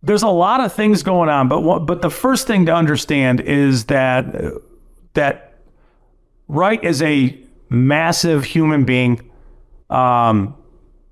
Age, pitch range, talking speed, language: 50-69, 125-180 Hz, 135 wpm, English